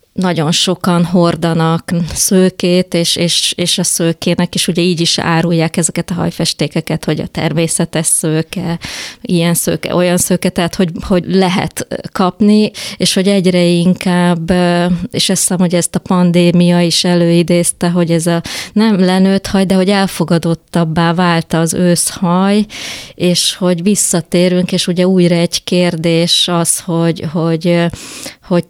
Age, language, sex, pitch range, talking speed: 20-39, Hungarian, female, 160-180 Hz, 140 wpm